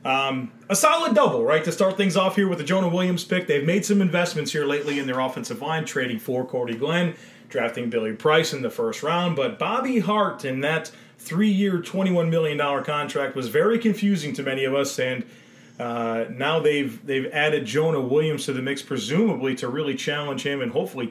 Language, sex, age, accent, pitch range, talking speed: English, male, 30-49, American, 140-185 Hz, 200 wpm